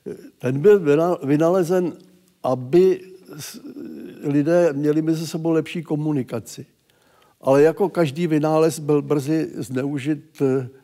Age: 70-89